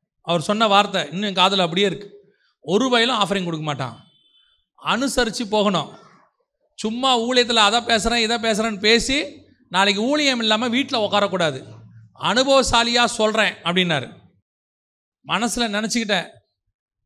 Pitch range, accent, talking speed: 190-285 Hz, native, 115 wpm